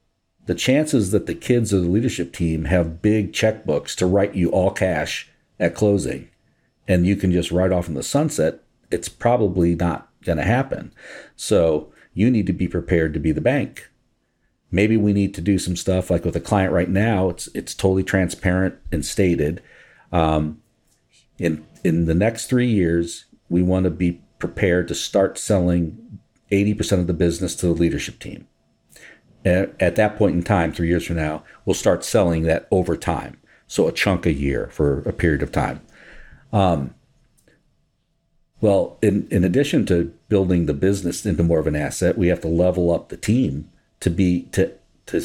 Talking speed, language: 180 wpm, English